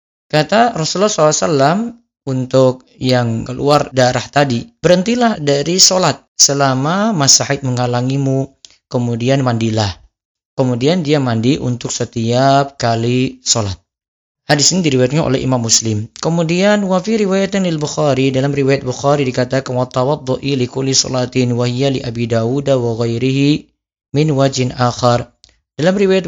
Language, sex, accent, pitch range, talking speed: Indonesian, male, native, 125-150 Hz, 110 wpm